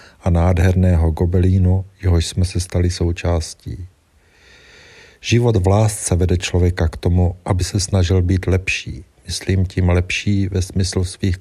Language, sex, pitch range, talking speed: Czech, male, 90-100 Hz, 135 wpm